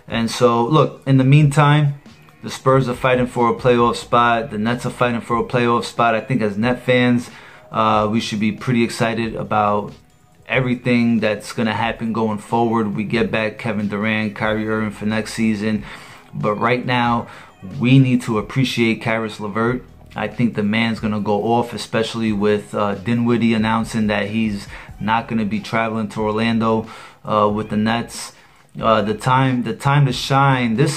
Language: English